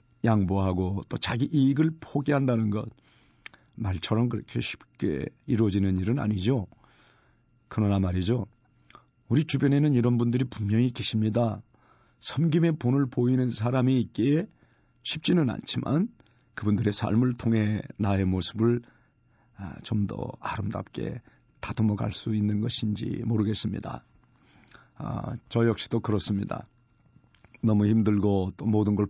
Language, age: Korean, 40-59